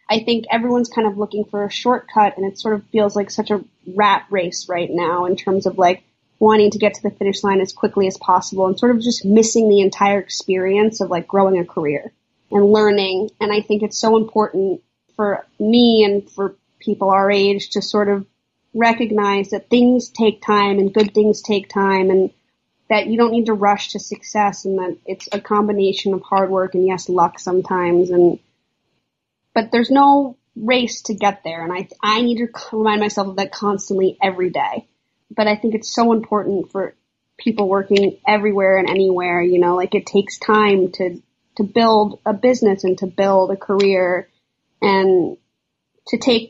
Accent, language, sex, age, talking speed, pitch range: American, English, female, 20-39, 190 wpm, 190-215 Hz